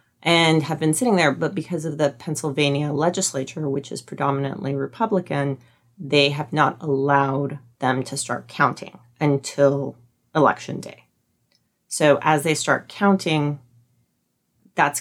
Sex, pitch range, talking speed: female, 140-160 Hz, 130 wpm